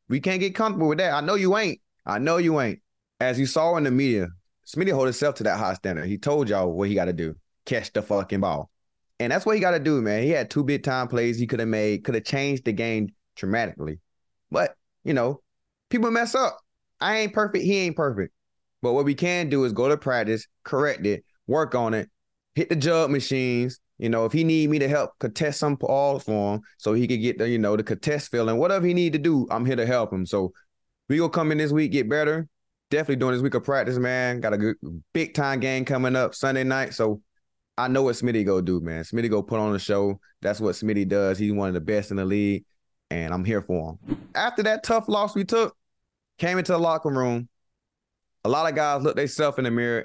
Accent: American